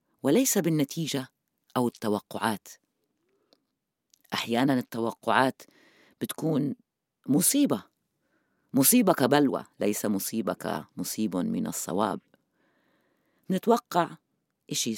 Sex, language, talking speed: female, Arabic, 70 wpm